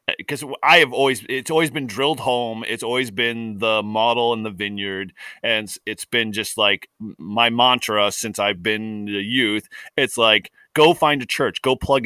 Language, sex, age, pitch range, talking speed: English, male, 30-49, 100-130 Hz, 185 wpm